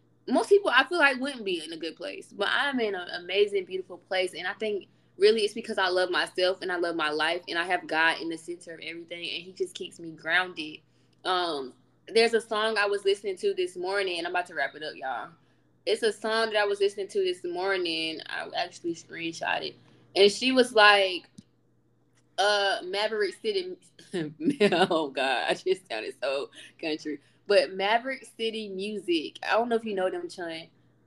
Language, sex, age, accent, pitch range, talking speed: English, female, 20-39, American, 175-260 Hz, 205 wpm